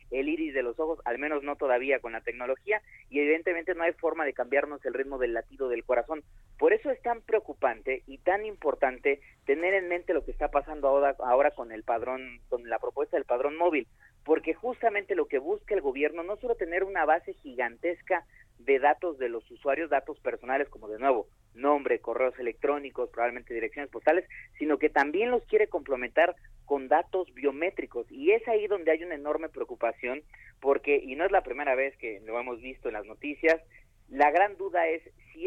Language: Spanish